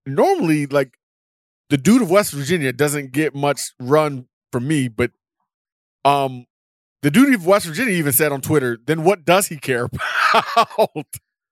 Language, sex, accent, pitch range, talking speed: English, male, American, 150-190 Hz, 155 wpm